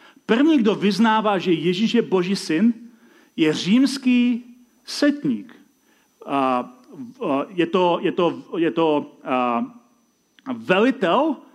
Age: 40-59